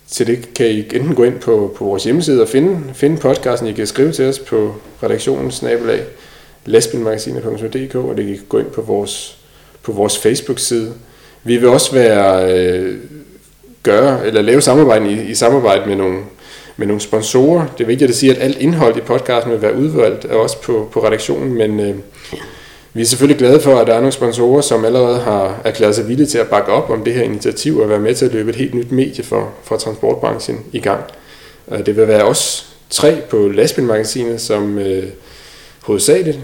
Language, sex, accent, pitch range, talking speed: Danish, male, native, 105-130 Hz, 195 wpm